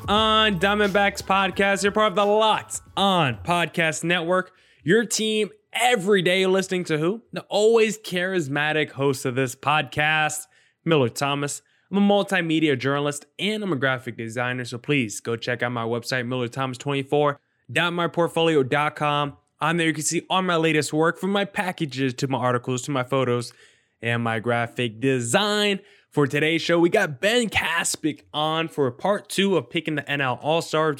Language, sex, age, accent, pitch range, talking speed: English, male, 20-39, American, 130-185 Hz, 160 wpm